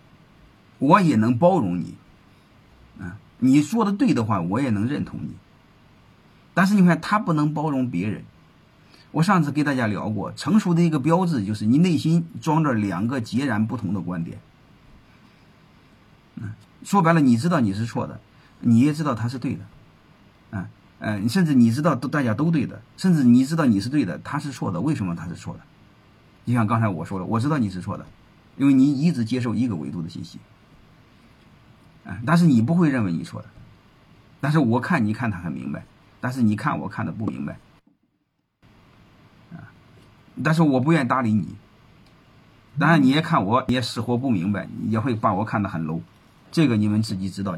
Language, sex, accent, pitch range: Chinese, male, native, 105-155 Hz